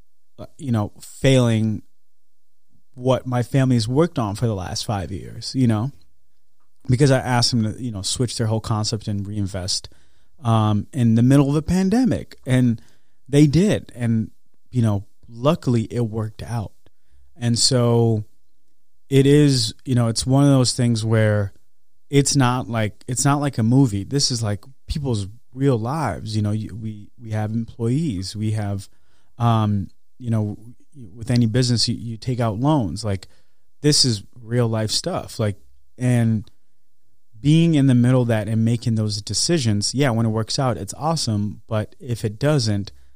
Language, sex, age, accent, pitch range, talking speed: English, male, 30-49, American, 100-130 Hz, 165 wpm